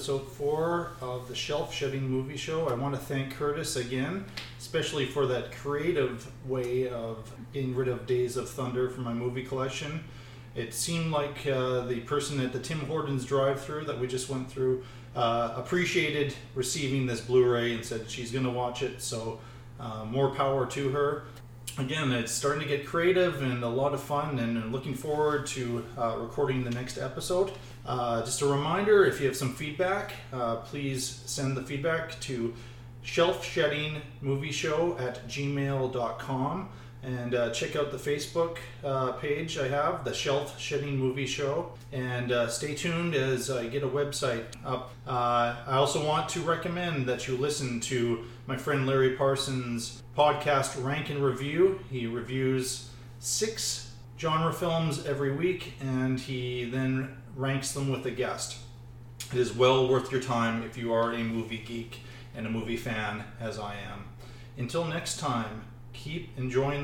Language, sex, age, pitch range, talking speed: English, male, 30-49, 120-140 Hz, 165 wpm